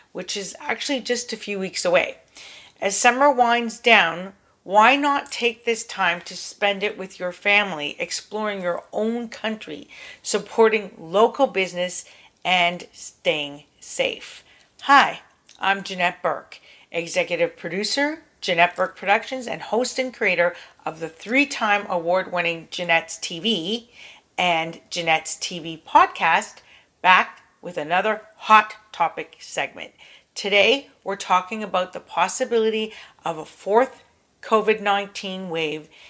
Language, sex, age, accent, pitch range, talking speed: English, female, 40-59, American, 175-220 Hz, 125 wpm